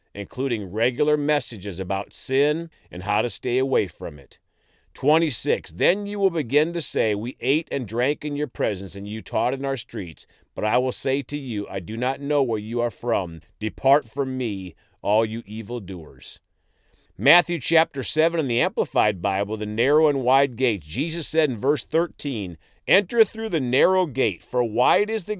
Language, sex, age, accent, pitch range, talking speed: English, male, 50-69, American, 110-160 Hz, 185 wpm